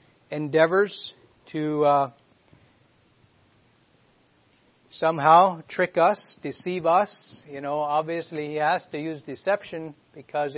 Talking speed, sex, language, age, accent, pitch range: 95 wpm, male, English, 60-79, American, 140-165 Hz